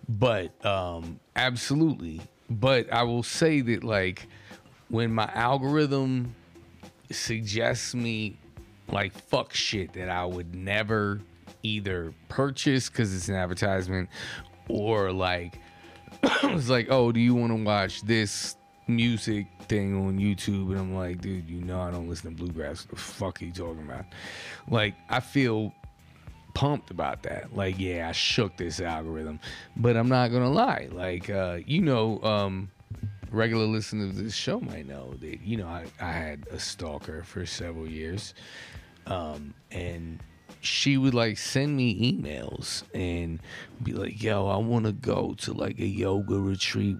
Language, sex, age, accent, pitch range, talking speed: English, male, 30-49, American, 90-115 Hz, 155 wpm